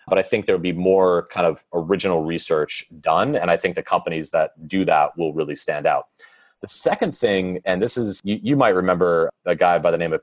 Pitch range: 95-155 Hz